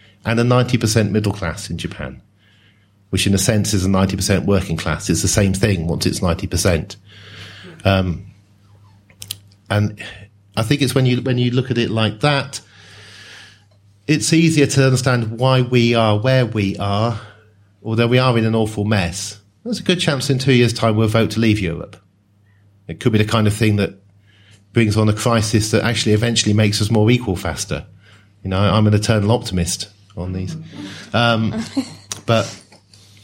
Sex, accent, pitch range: male, British, 100-115 Hz